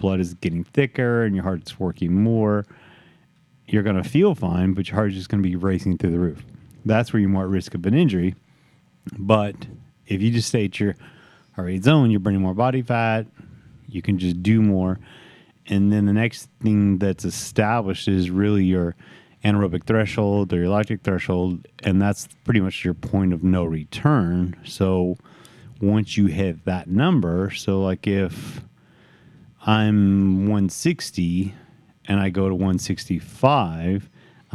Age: 30-49